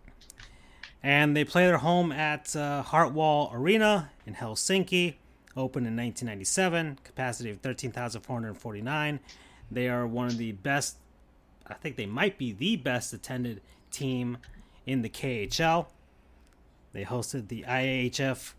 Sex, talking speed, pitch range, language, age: male, 125 wpm, 105-150 Hz, English, 30-49